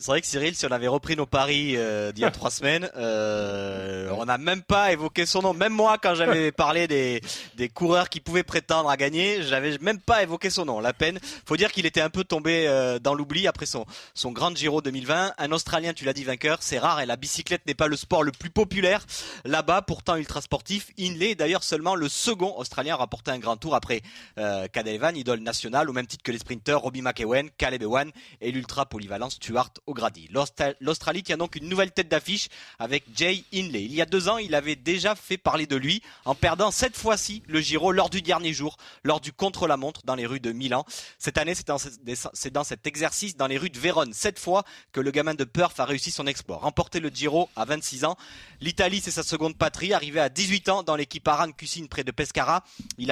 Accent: French